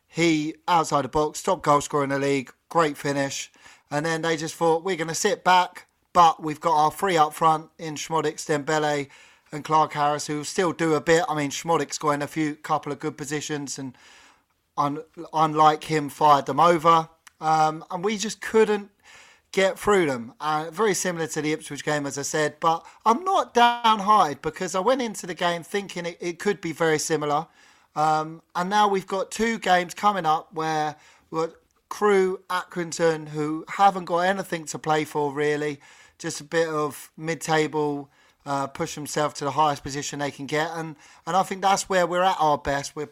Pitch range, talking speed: 150-175 Hz, 190 wpm